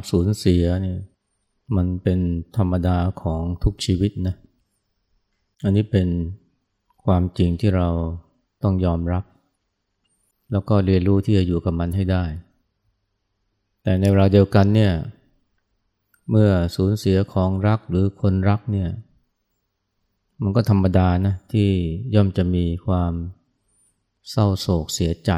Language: Thai